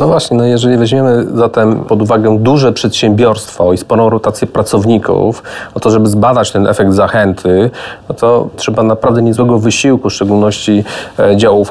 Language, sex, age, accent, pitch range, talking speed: Polish, male, 30-49, native, 105-115 Hz, 160 wpm